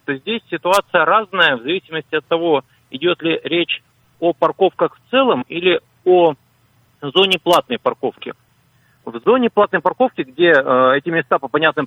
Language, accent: Russian, native